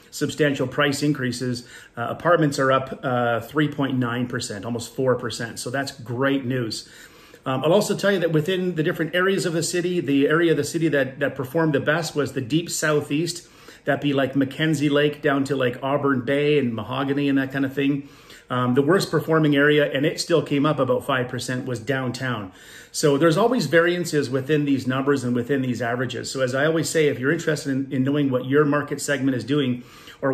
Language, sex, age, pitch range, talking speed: English, male, 40-59, 125-150 Hz, 200 wpm